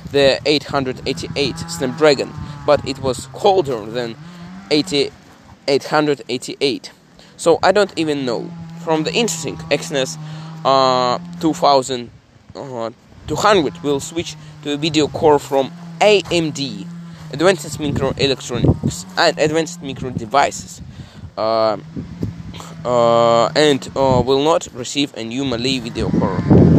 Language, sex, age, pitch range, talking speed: English, male, 20-39, 130-165 Hz, 105 wpm